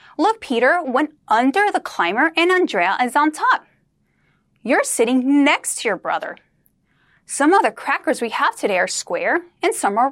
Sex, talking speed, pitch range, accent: female, 170 wpm, 225-325 Hz, American